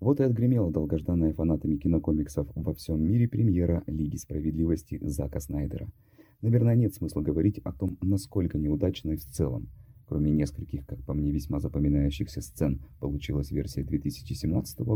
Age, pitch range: 30-49, 75-110 Hz